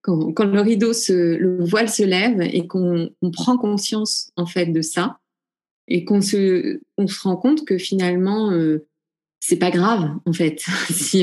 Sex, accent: female, French